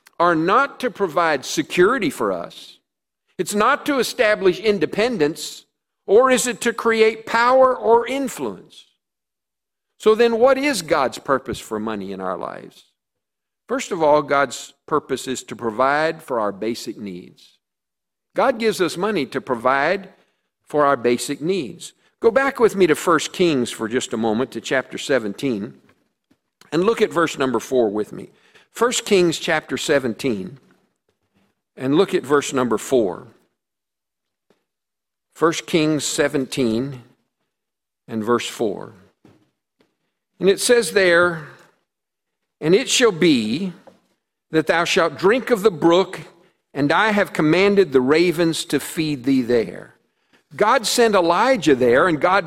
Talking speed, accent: 140 wpm, American